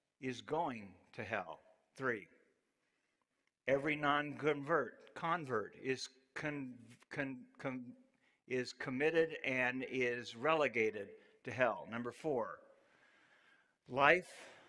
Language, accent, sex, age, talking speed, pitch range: English, American, male, 60-79, 90 wpm, 105-140 Hz